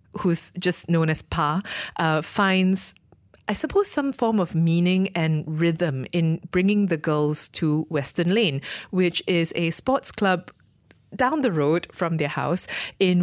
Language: English